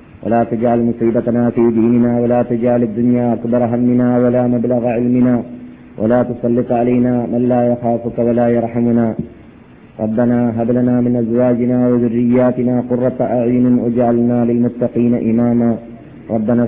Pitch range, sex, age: 120-140 Hz, male, 40-59